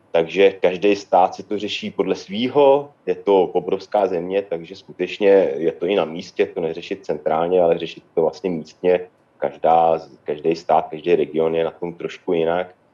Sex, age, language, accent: male, 30-49, Czech, native